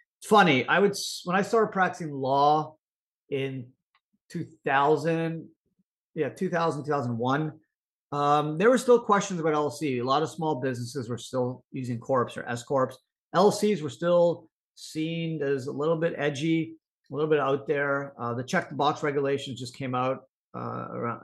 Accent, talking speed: American, 150 wpm